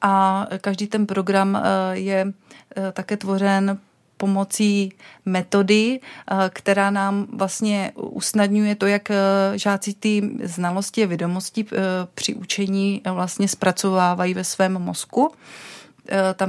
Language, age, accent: Czech, 30-49, native